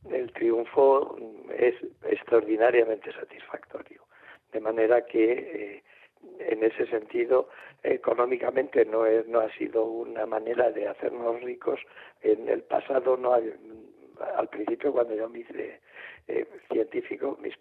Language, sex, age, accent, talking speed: Spanish, male, 60-79, Spanish, 125 wpm